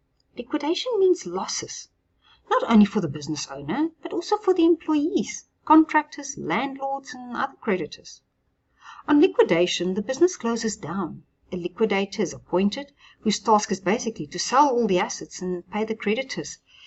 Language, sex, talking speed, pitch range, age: English, female, 150 wpm, 170-285 Hz, 50-69